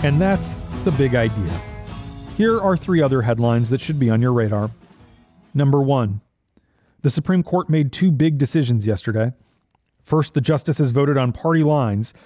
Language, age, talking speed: English, 40-59, 160 wpm